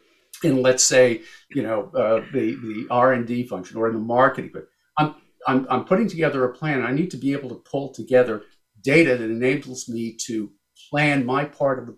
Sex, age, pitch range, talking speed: male, 50-69, 120-150 Hz, 200 wpm